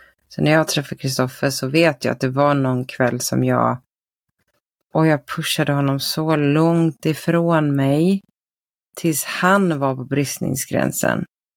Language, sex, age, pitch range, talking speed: Swedish, female, 30-49, 130-165 Hz, 145 wpm